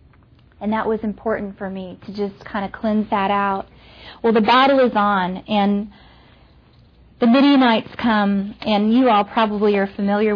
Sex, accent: female, American